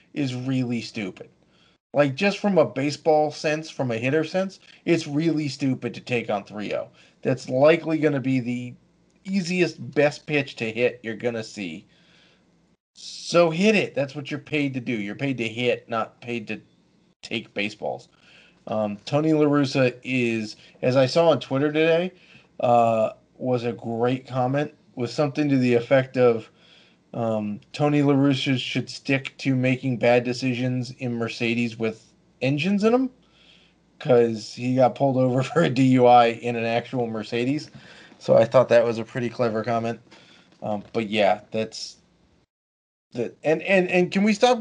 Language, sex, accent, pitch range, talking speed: English, male, American, 120-160 Hz, 165 wpm